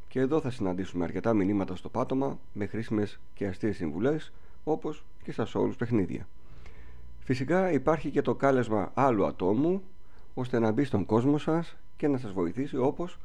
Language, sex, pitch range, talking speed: Greek, male, 100-135 Hz, 165 wpm